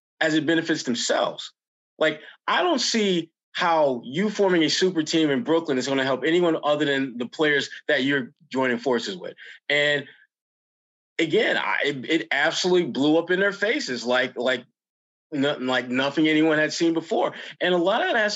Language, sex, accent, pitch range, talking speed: English, male, American, 145-200 Hz, 185 wpm